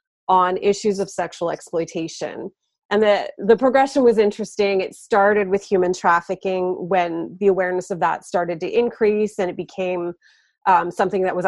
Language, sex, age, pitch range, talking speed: English, female, 30-49, 180-225 Hz, 160 wpm